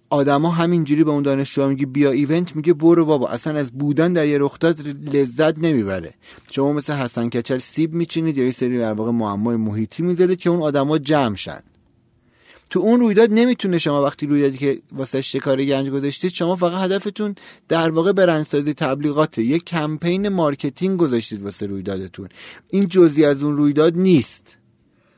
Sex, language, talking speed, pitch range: male, Persian, 160 wpm, 125-170 Hz